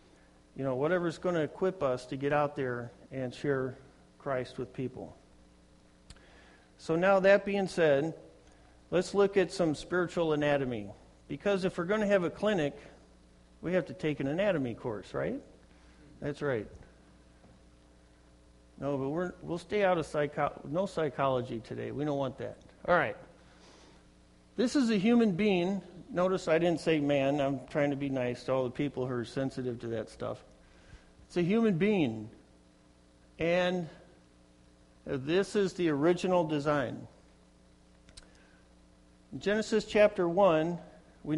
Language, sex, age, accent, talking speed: English, male, 50-69, American, 150 wpm